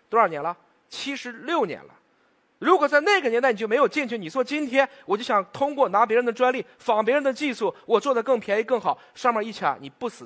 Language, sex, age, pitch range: Chinese, male, 30-49, 190-295 Hz